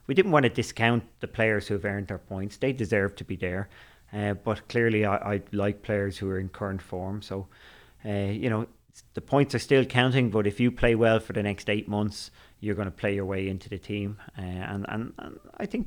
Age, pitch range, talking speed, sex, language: 30-49, 100-115 Hz, 240 wpm, male, English